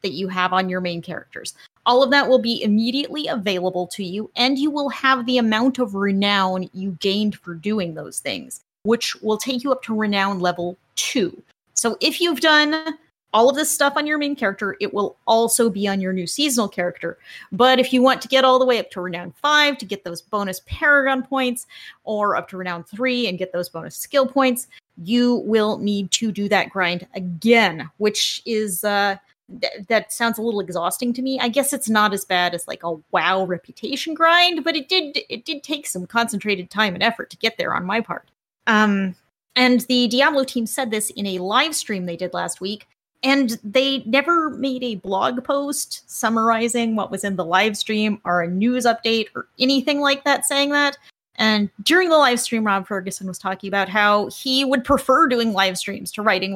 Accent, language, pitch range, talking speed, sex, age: American, English, 195-265 Hz, 205 wpm, female, 30-49